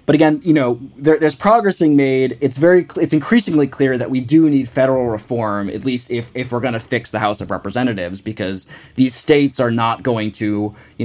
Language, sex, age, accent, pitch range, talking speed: English, male, 20-39, American, 115-145 Hz, 215 wpm